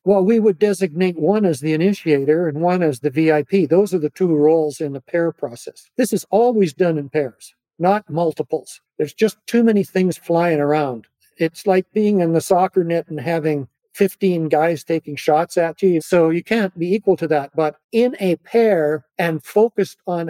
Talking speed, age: 195 wpm, 60-79